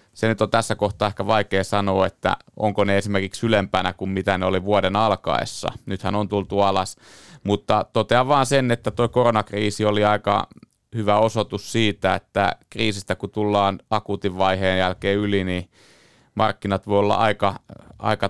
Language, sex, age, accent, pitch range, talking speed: Finnish, male, 30-49, native, 95-110 Hz, 160 wpm